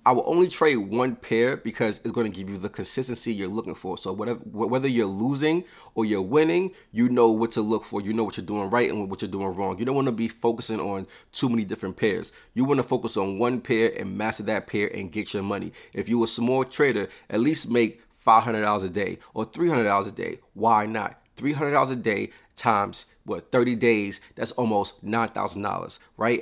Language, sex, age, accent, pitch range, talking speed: English, male, 30-49, American, 105-125 Hz, 225 wpm